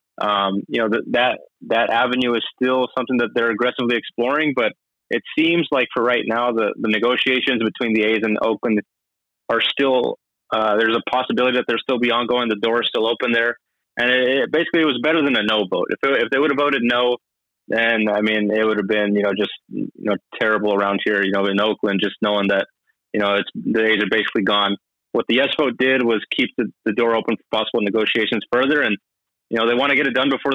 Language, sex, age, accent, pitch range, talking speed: English, male, 20-39, American, 105-125 Hz, 240 wpm